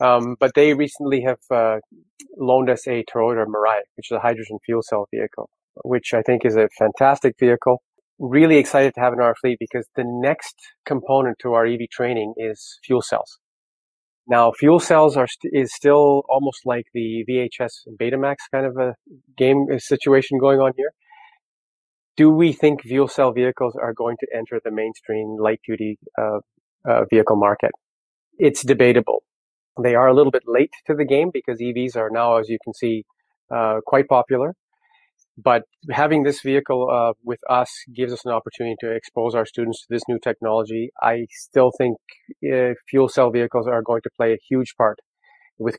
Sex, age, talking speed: male, 30-49, 180 wpm